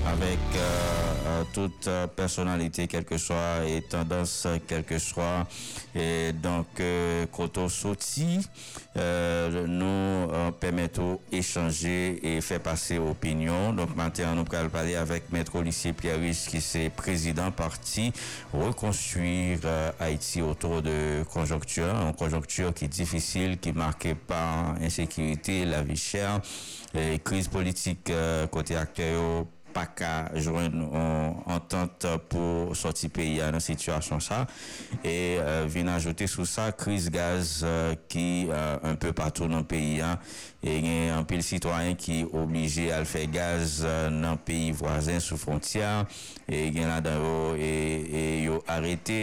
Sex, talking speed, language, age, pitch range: male, 145 wpm, French, 50-69, 80-90 Hz